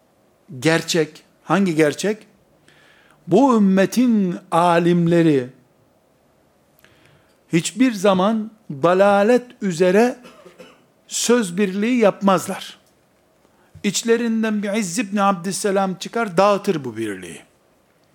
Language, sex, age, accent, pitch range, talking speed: Turkish, male, 60-79, native, 170-215 Hz, 75 wpm